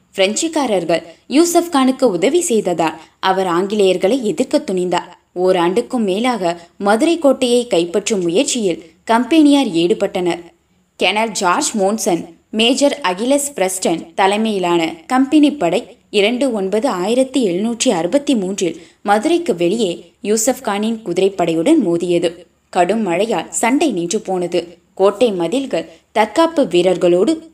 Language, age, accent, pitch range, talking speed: Tamil, 20-39, native, 175-255 Hz, 90 wpm